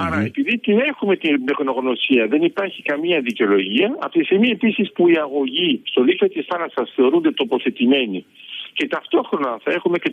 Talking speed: 160 wpm